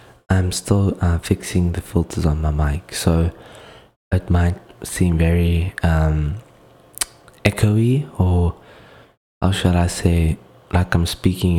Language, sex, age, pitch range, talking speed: English, male, 20-39, 80-95 Hz, 125 wpm